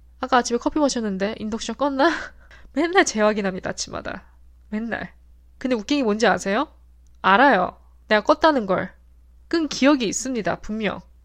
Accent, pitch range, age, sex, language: native, 185-255 Hz, 20-39, female, Korean